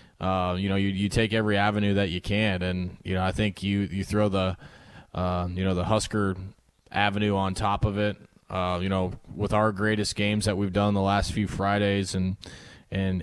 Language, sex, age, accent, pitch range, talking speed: English, male, 20-39, American, 95-110 Hz, 210 wpm